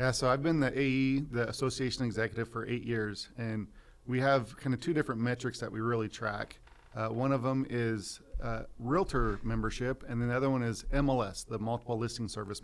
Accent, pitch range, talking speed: American, 110-130 Hz, 205 wpm